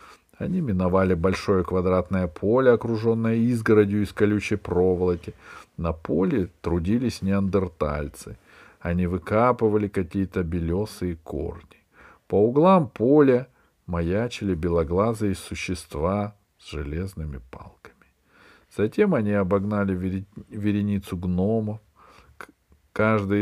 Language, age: Russian, 50-69